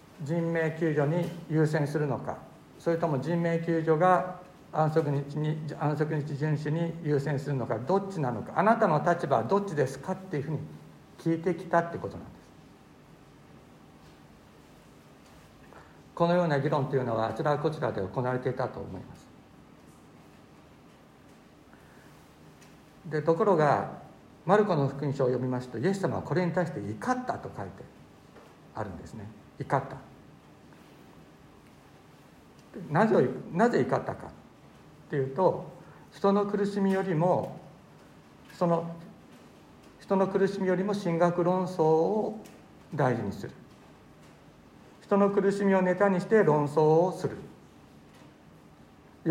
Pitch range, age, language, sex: 145-185 Hz, 60-79, Japanese, male